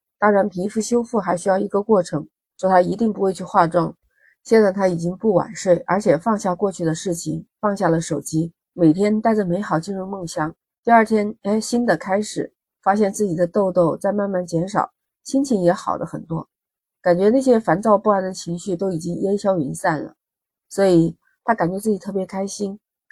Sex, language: female, Chinese